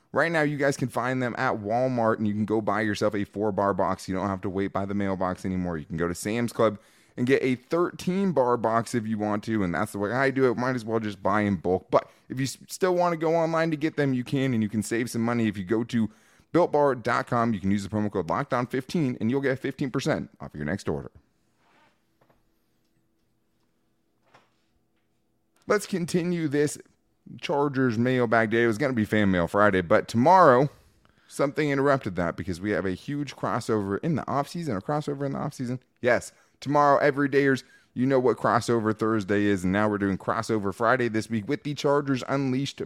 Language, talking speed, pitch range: English, 210 wpm, 100-135 Hz